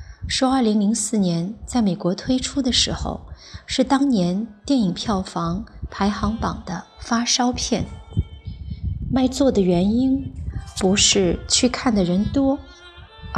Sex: female